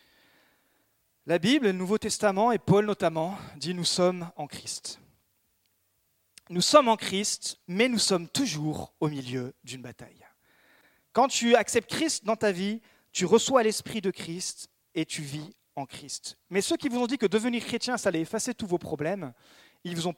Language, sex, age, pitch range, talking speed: French, male, 40-59, 150-225 Hz, 185 wpm